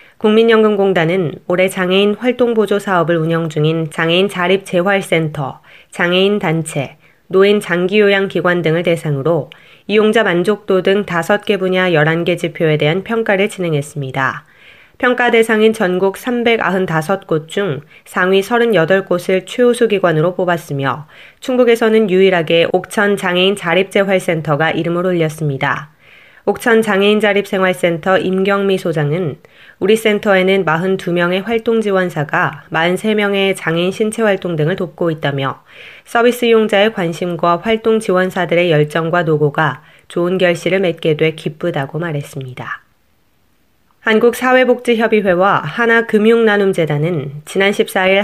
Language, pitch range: Korean, 165-205 Hz